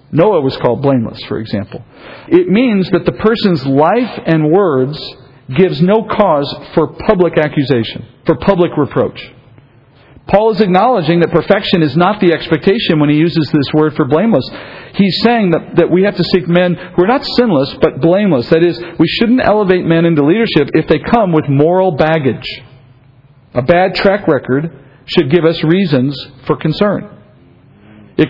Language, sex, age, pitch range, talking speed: English, male, 50-69, 140-185 Hz, 170 wpm